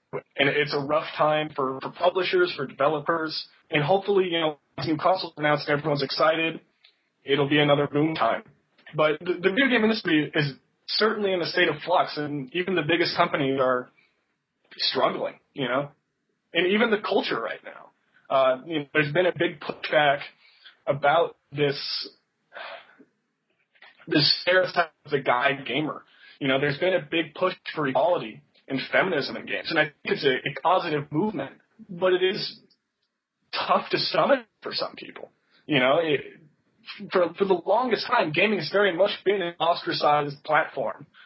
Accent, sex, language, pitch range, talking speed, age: American, male, English, 150-185 Hz, 165 wpm, 20-39